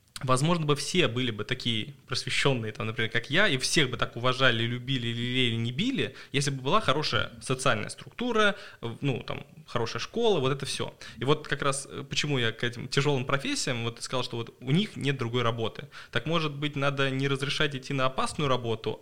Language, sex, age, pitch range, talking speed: Russian, male, 20-39, 120-145 Hz, 195 wpm